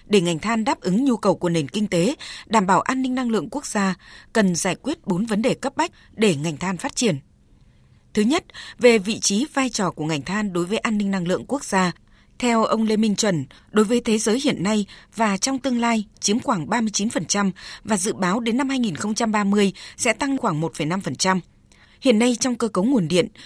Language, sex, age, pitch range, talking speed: Vietnamese, female, 20-39, 185-240 Hz, 215 wpm